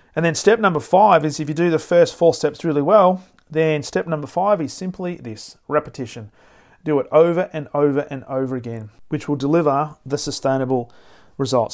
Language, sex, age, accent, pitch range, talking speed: English, male, 40-59, Australian, 130-150 Hz, 190 wpm